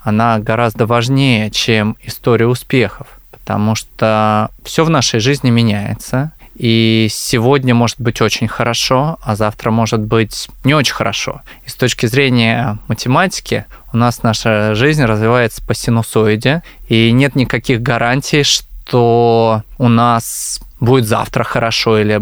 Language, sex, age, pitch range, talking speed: Russian, male, 20-39, 115-130 Hz, 130 wpm